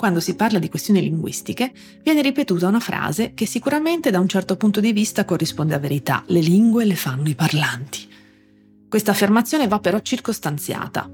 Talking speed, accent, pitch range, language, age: 170 wpm, native, 155-225 Hz, Italian, 40-59